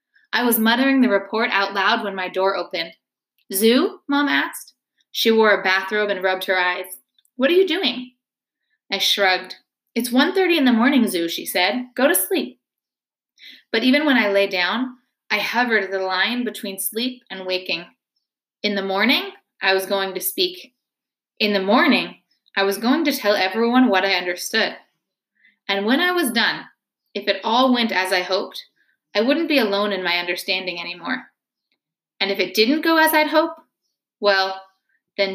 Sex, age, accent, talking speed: female, 20-39, American, 175 wpm